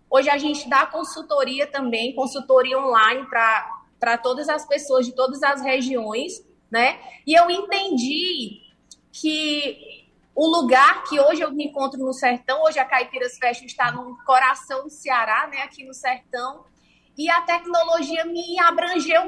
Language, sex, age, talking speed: Portuguese, female, 20-39, 150 wpm